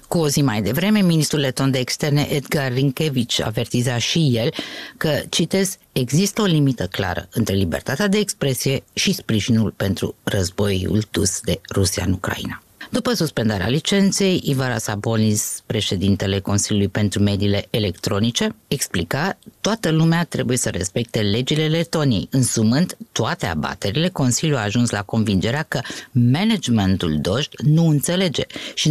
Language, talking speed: Romanian, 135 wpm